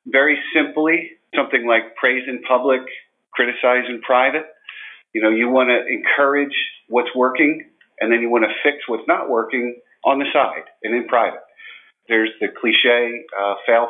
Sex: male